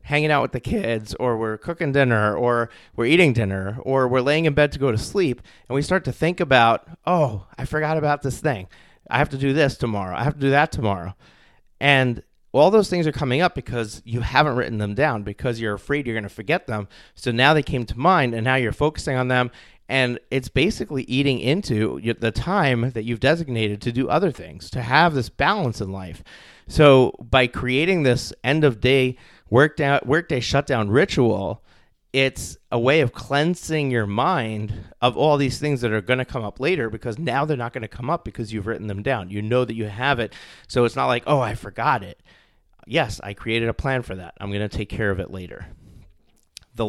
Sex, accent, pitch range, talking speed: male, American, 110-140 Hz, 220 wpm